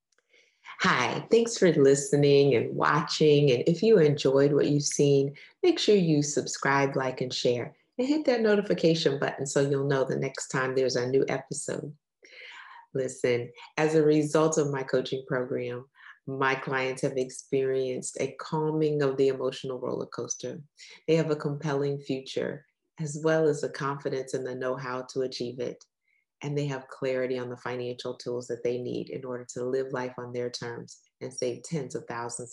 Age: 30-49